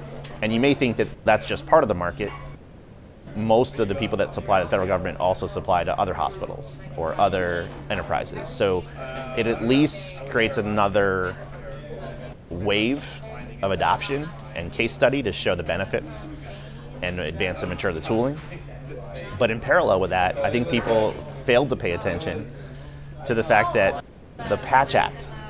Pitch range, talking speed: 90-115 Hz, 165 wpm